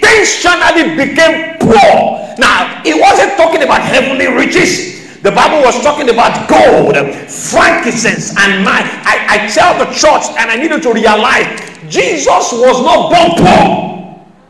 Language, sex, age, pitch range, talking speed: English, male, 50-69, 230-320 Hz, 140 wpm